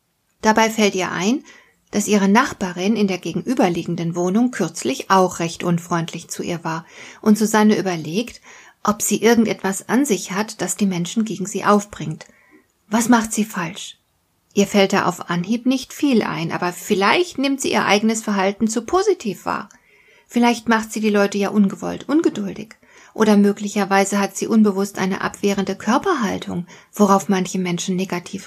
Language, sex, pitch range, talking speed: German, female, 190-225 Hz, 160 wpm